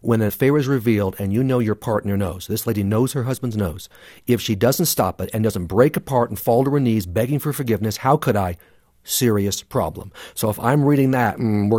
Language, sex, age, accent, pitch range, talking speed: English, male, 50-69, American, 105-135 Hz, 235 wpm